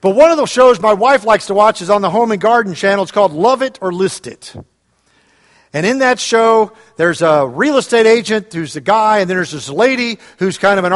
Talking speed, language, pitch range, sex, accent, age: 245 wpm, English, 190-250 Hz, male, American, 50-69